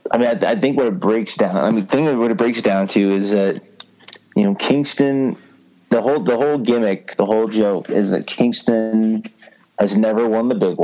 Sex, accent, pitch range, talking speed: male, American, 95-110 Hz, 215 wpm